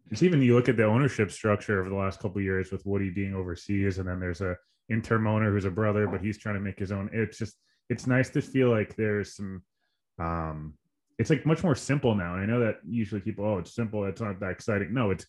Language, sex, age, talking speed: English, male, 20-39, 255 wpm